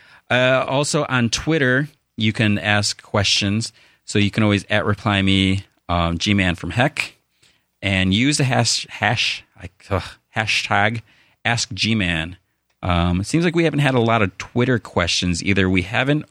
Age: 30-49